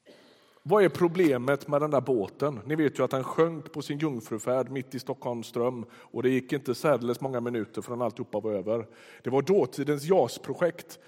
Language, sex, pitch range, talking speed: Swedish, male, 125-165 Hz, 185 wpm